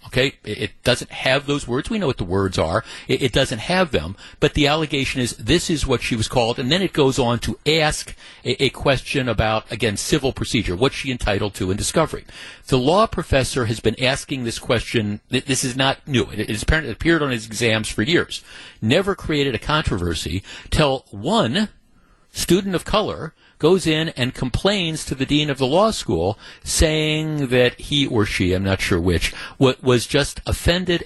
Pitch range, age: 115-155 Hz, 60-79